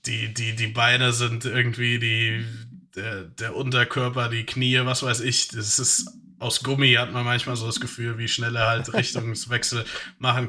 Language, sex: German, male